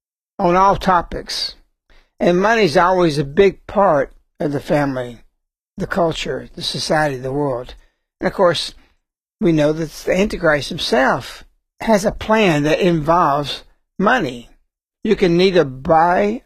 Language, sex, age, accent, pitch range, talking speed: English, male, 60-79, American, 150-185 Hz, 140 wpm